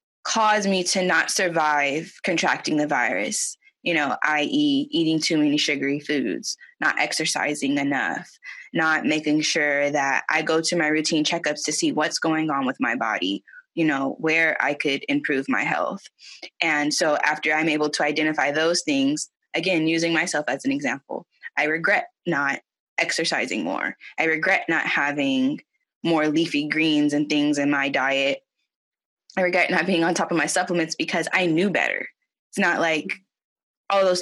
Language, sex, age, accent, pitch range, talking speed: English, female, 10-29, American, 150-185 Hz, 165 wpm